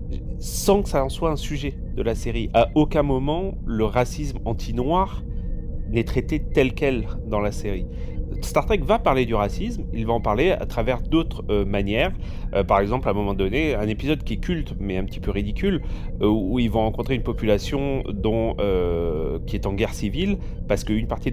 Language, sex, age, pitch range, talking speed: French, male, 30-49, 100-125 Hz, 205 wpm